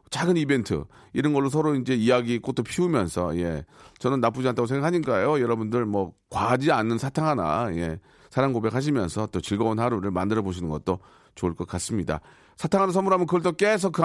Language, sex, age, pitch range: Korean, male, 40-59, 115-175 Hz